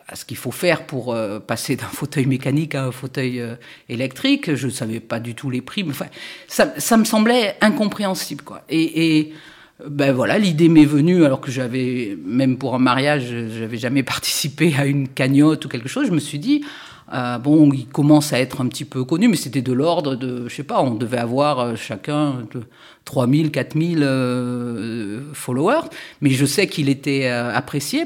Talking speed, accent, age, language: 190 wpm, French, 50-69, French